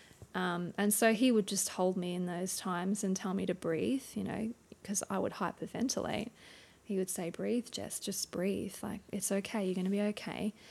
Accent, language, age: Australian, English, 20-39